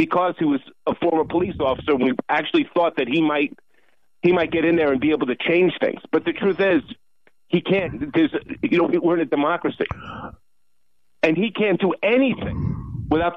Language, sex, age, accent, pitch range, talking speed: English, male, 50-69, American, 145-195 Hz, 195 wpm